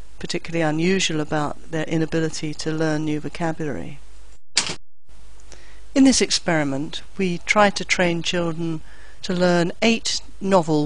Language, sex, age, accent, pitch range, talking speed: English, female, 50-69, British, 150-180 Hz, 115 wpm